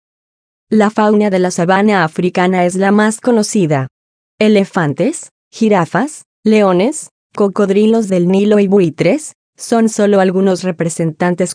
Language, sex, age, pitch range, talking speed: Spanish, female, 20-39, 175-210 Hz, 115 wpm